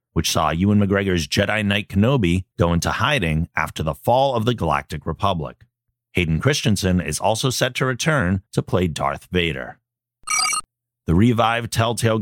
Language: English